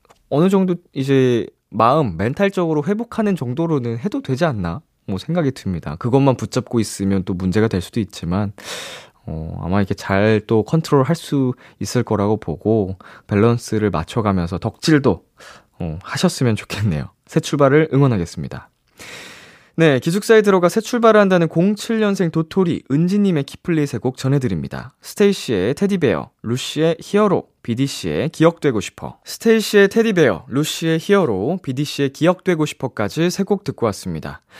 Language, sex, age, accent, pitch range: Korean, male, 20-39, native, 110-180 Hz